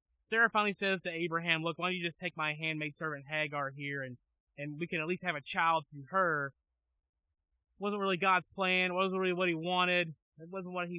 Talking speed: 230 wpm